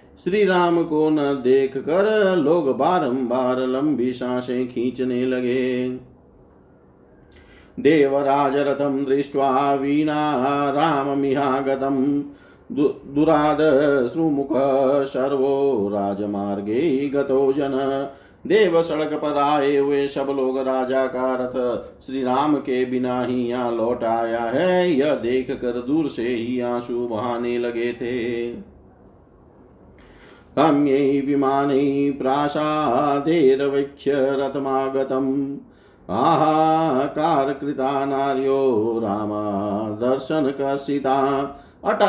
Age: 50-69